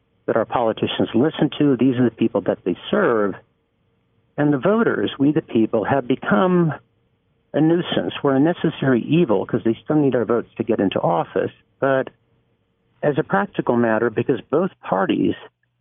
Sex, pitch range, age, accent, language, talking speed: male, 115-145 Hz, 60-79, American, English, 165 wpm